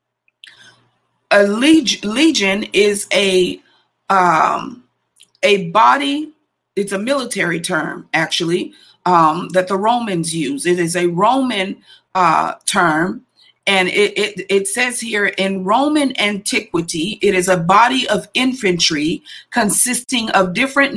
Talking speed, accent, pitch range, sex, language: 120 wpm, American, 185-230 Hz, female, English